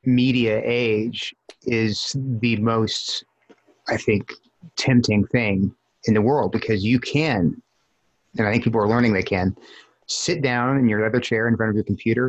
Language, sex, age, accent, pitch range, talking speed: English, male, 30-49, American, 105-125 Hz, 165 wpm